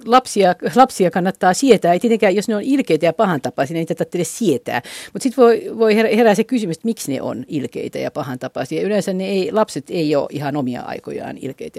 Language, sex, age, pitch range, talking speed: Finnish, female, 50-69, 160-235 Hz, 205 wpm